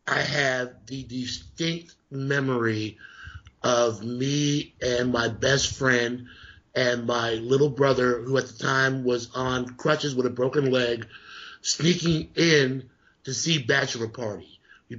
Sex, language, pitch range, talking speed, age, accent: male, English, 125-150 Hz, 130 wpm, 50-69, American